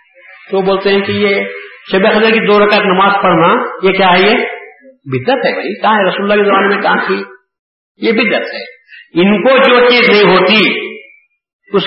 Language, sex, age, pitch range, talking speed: Urdu, male, 50-69, 180-230 Hz, 175 wpm